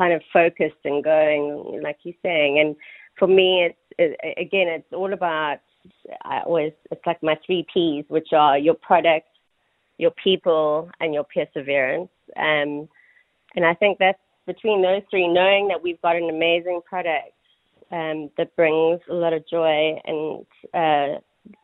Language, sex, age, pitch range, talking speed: English, female, 30-49, 155-180 Hz, 160 wpm